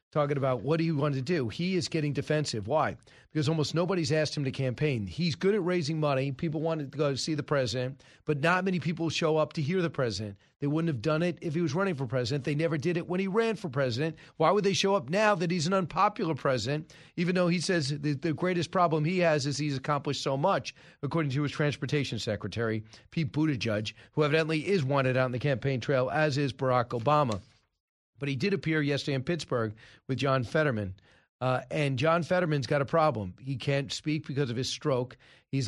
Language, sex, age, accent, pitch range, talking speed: English, male, 40-59, American, 135-165 Hz, 220 wpm